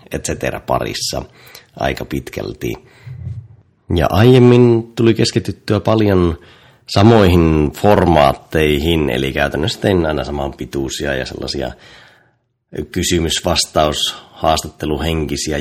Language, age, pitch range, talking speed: Finnish, 30-49, 75-115 Hz, 75 wpm